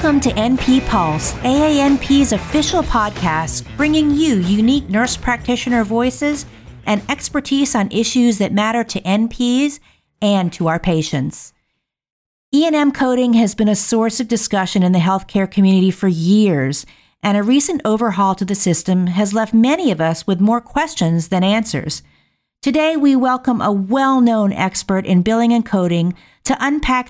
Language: English